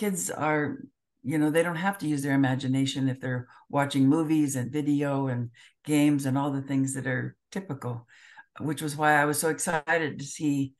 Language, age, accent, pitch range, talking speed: English, 60-79, American, 135-155 Hz, 195 wpm